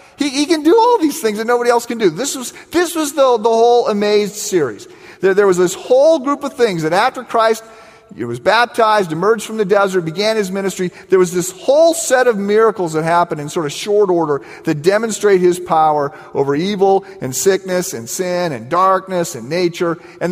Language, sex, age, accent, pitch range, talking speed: English, male, 40-59, American, 170-260 Hz, 210 wpm